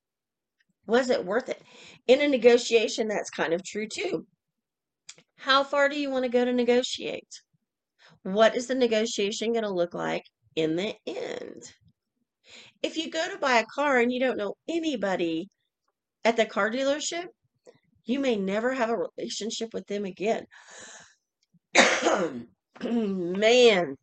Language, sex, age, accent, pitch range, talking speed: English, female, 40-59, American, 190-260 Hz, 145 wpm